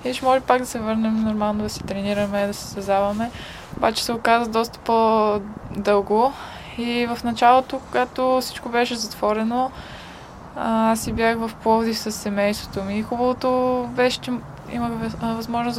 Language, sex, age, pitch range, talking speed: Bulgarian, female, 20-39, 210-240 Hz, 145 wpm